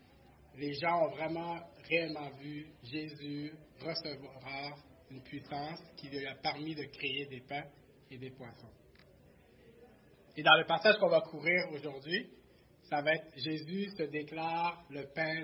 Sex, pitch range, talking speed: male, 135-165 Hz, 145 wpm